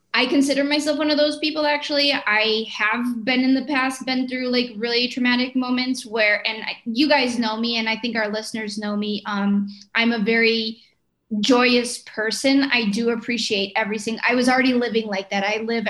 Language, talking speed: English, 200 wpm